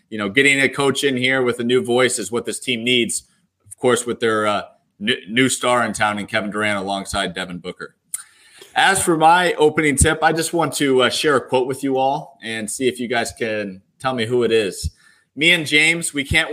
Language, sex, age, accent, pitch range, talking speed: English, male, 30-49, American, 115-140 Hz, 230 wpm